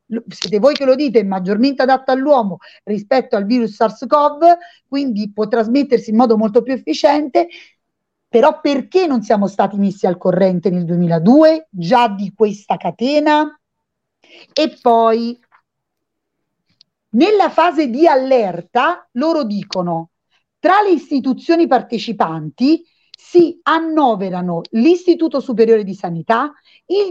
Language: Italian